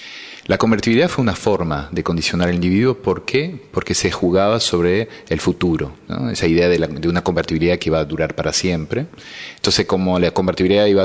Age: 30-49